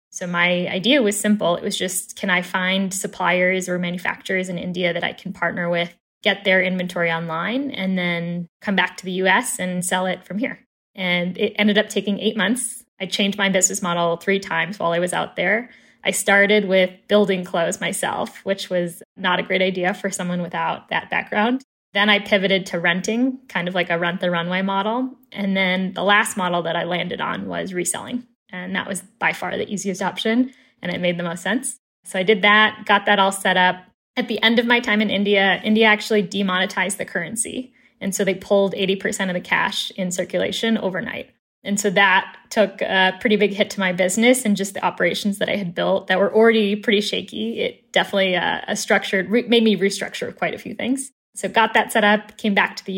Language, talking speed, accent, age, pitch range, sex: English, 210 wpm, American, 10-29, 185-215 Hz, female